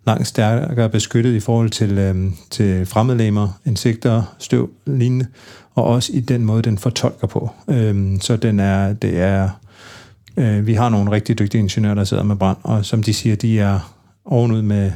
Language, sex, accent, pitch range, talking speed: Danish, male, native, 100-115 Hz, 180 wpm